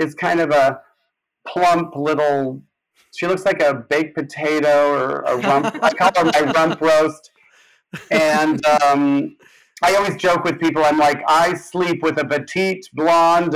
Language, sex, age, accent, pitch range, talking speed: English, male, 40-59, American, 140-170 Hz, 160 wpm